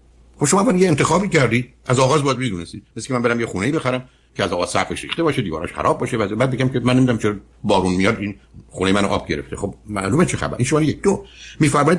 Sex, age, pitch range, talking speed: male, 60-79, 90-135 Hz, 230 wpm